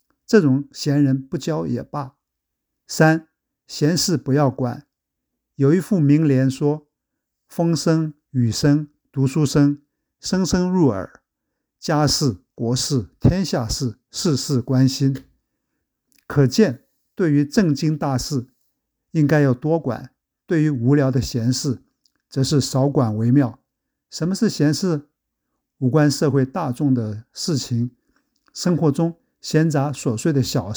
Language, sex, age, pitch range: Chinese, male, 50-69, 130-155 Hz